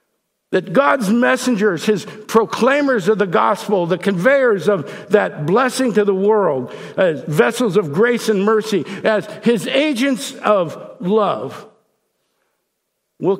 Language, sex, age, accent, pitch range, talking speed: English, male, 60-79, American, 170-250 Hz, 125 wpm